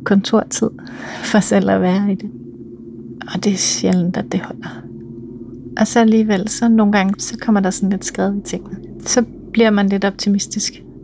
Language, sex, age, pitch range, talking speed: Danish, female, 30-49, 180-205 Hz, 180 wpm